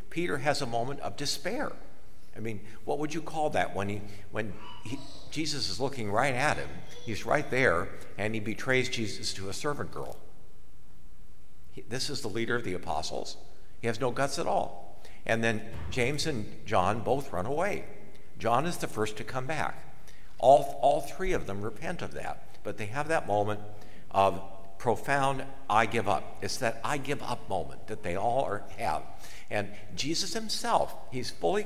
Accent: American